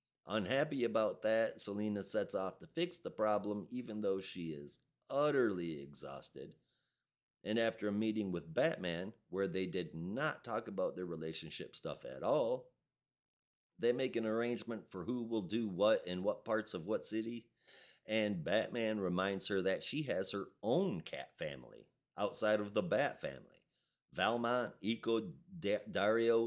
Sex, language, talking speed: male, English, 150 wpm